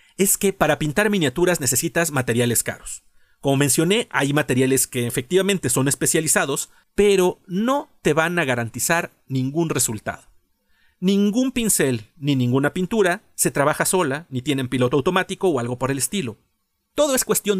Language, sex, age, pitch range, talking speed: Spanish, male, 40-59, 135-190 Hz, 150 wpm